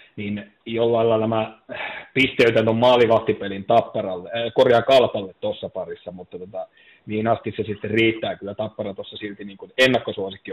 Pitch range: 105-130 Hz